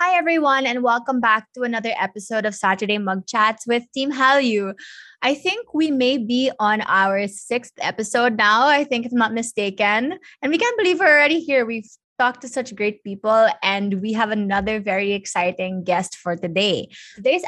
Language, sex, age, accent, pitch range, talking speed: English, female, 20-39, Filipino, 200-255 Hz, 185 wpm